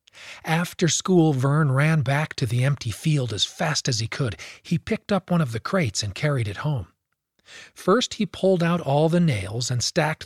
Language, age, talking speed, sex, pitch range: English, 40-59, 200 wpm, male, 115-175 Hz